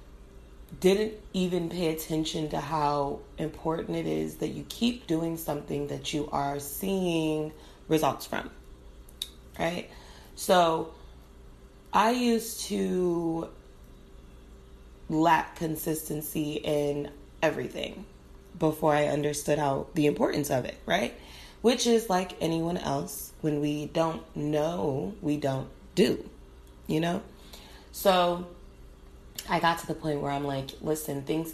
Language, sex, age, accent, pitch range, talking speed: English, female, 30-49, American, 125-160 Hz, 120 wpm